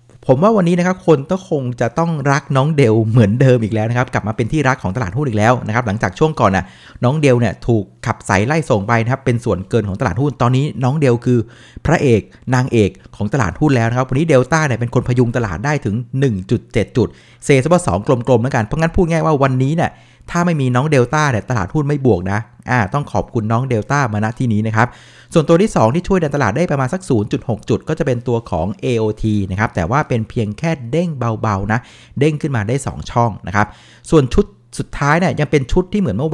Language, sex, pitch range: Thai, male, 115-145 Hz